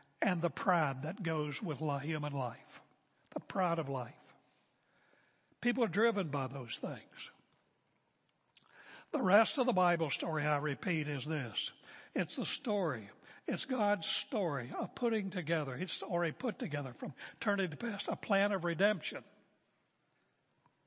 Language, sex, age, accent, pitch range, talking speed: English, male, 60-79, American, 145-205 Hz, 140 wpm